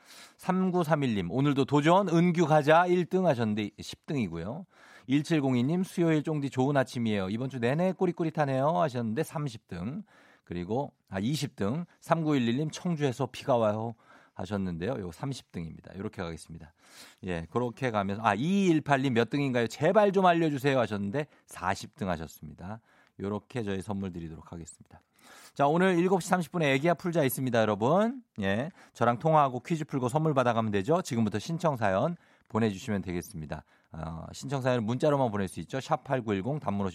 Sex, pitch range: male, 105-170 Hz